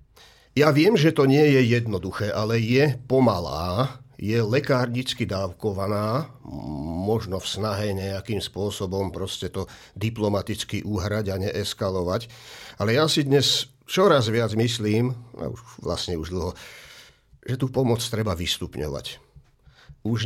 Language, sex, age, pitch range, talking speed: English, male, 50-69, 95-115 Hz, 120 wpm